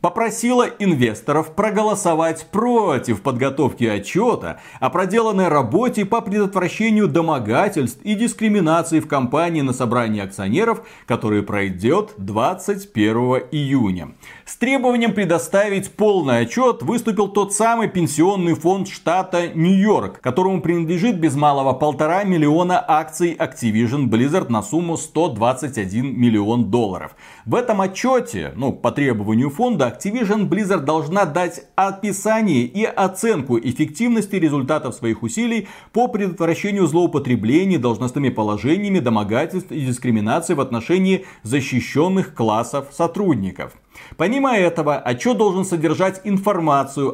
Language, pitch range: Russian, 125-195 Hz